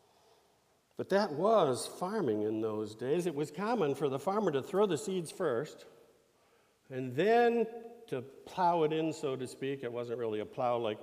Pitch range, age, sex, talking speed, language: 130-200 Hz, 50-69, male, 180 wpm, English